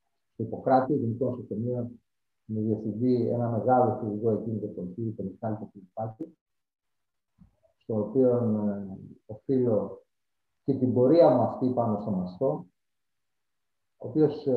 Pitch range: 110-145 Hz